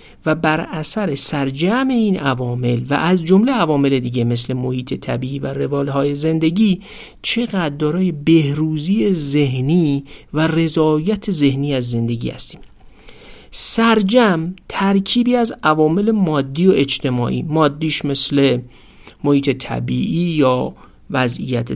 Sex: male